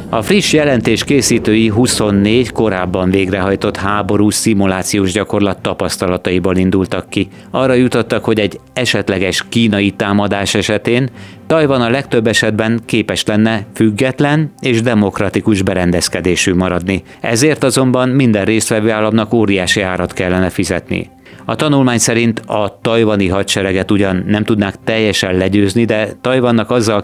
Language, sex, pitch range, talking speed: Hungarian, male, 95-115 Hz, 120 wpm